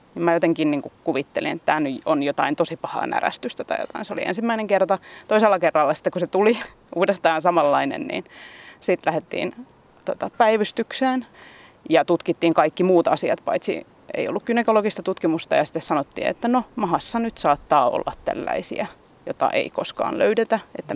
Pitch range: 165-230 Hz